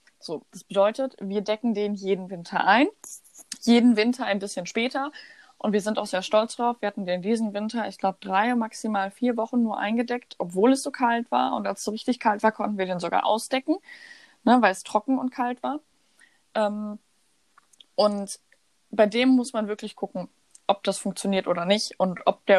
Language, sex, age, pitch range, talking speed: German, female, 20-39, 200-250 Hz, 195 wpm